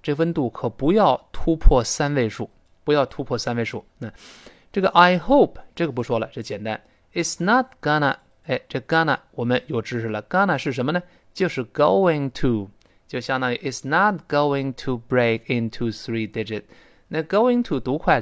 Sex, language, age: male, Chinese, 20-39